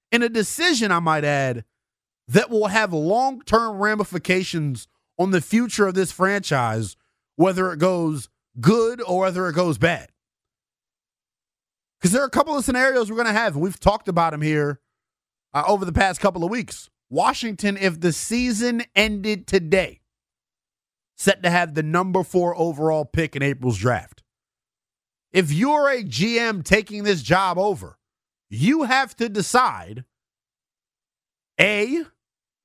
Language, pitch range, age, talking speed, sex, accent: English, 140-210 Hz, 30-49, 145 wpm, male, American